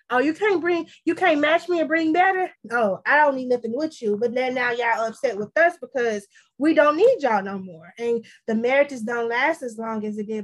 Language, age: English, 20-39